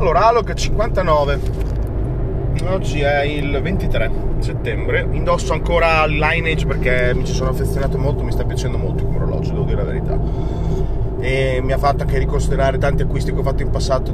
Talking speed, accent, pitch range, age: 170 wpm, native, 125-140 Hz, 30-49